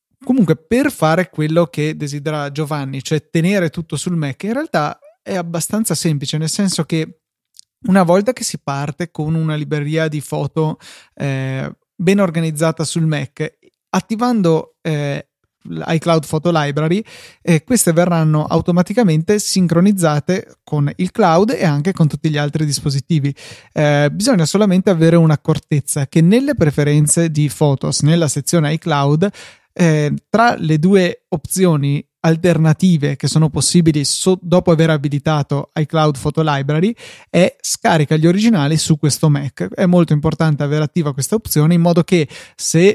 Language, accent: Italian, native